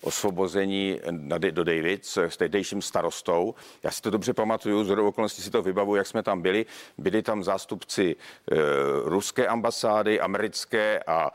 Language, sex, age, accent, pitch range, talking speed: Czech, male, 50-69, native, 105-125 Hz, 155 wpm